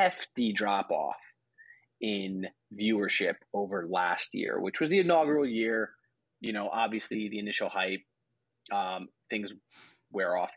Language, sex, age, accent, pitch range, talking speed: English, male, 30-49, American, 100-130 Hz, 130 wpm